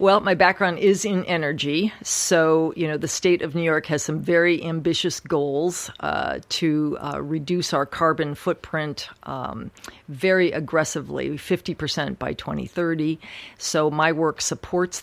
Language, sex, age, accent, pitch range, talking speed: English, female, 50-69, American, 145-165 Hz, 145 wpm